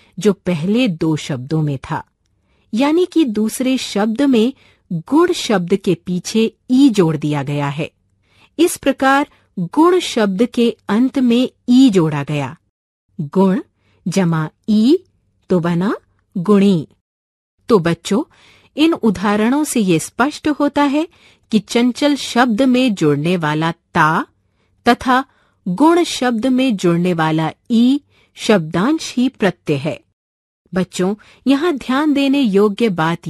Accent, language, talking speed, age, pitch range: native, Marathi, 125 wpm, 50-69, 160-260 Hz